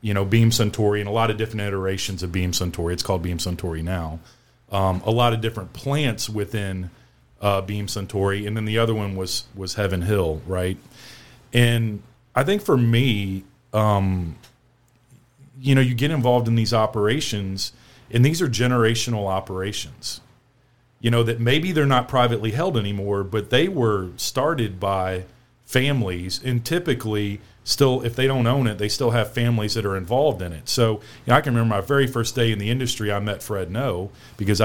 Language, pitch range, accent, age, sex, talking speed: English, 100-120 Hz, American, 40-59, male, 180 wpm